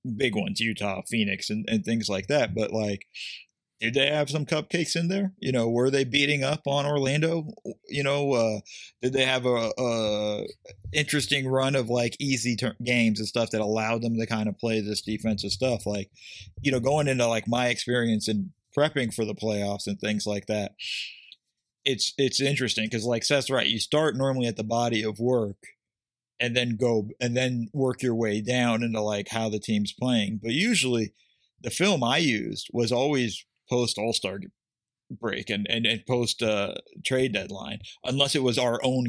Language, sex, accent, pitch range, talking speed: English, male, American, 110-130 Hz, 190 wpm